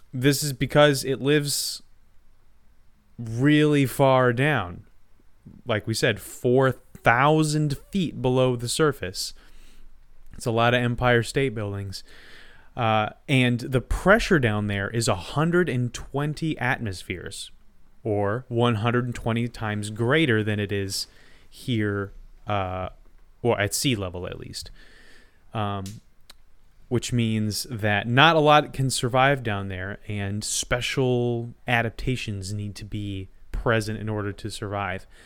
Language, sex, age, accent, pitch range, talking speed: English, male, 20-39, American, 100-130 Hz, 130 wpm